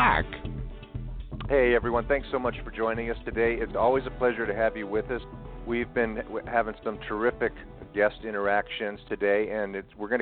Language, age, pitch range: English, 50-69, 105-125 Hz